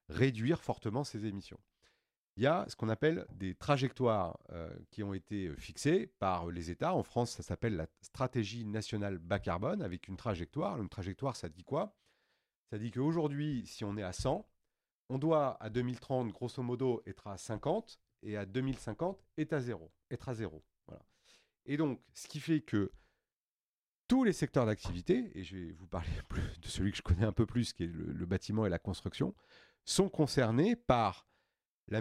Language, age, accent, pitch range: French, 40-59, French, 95-130 Hz